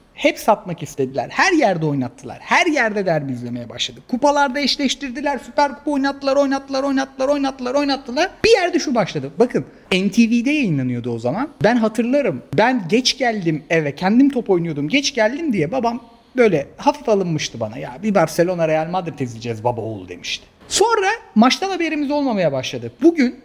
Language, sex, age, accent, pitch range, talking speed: Turkish, male, 40-59, native, 180-280 Hz, 155 wpm